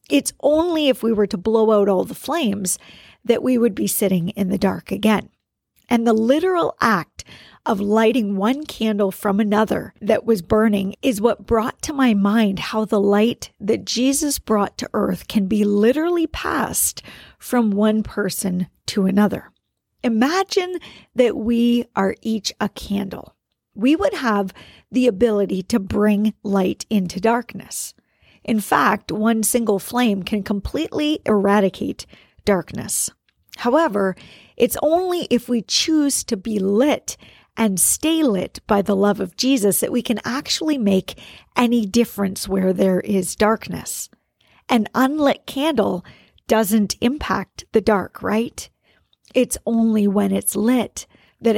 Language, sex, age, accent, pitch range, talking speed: English, female, 50-69, American, 200-245 Hz, 145 wpm